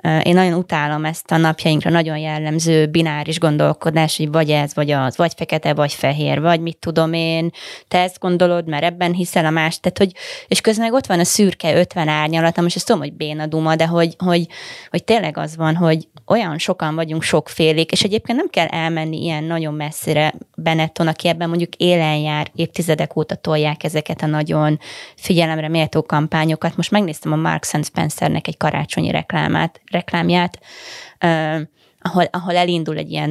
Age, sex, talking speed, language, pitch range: 20-39, female, 175 wpm, Hungarian, 155-180 Hz